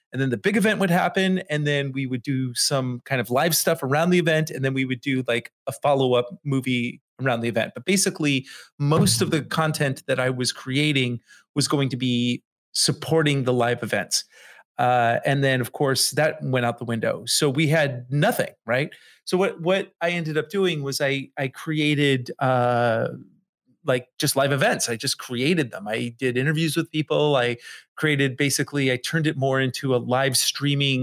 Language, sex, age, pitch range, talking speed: English, male, 30-49, 125-155 Hz, 195 wpm